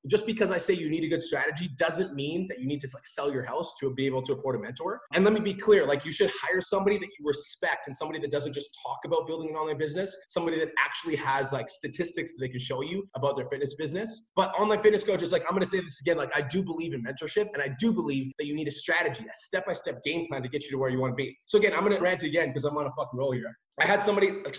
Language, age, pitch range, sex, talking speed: English, 30-49, 145-190 Hz, male, 300 wpm